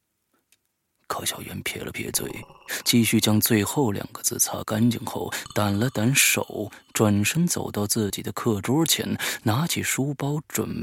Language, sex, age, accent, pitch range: Chinese, male, 30-49, native, 80-130 Hz